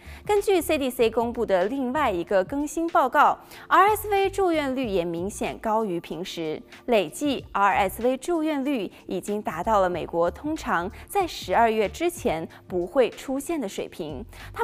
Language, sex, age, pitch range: Chinese, female, 20-39, 200-310 Hz